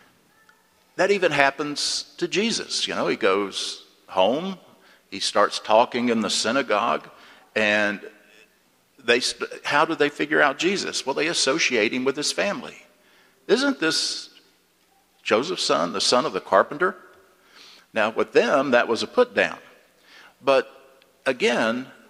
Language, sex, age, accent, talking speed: English, male, 50-69, American, 135 wpm